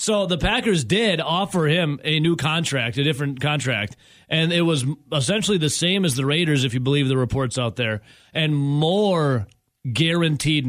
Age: 30-49